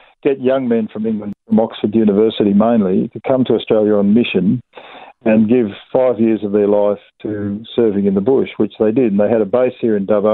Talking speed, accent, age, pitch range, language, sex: 220 wpm, Australian, 50-69, 105-120 Hz, English, male